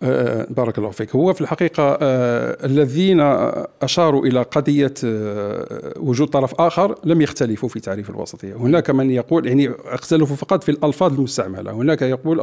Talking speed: 140 wpm